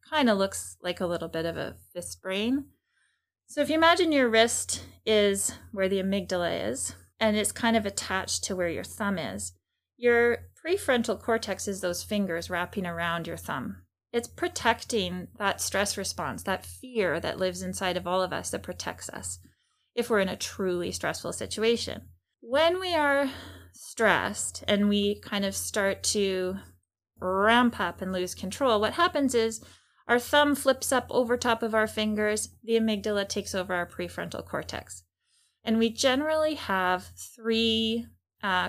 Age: 20-39